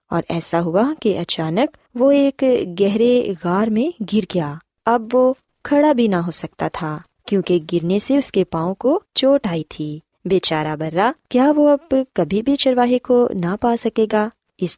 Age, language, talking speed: 20-39, Urdu, 180 wpm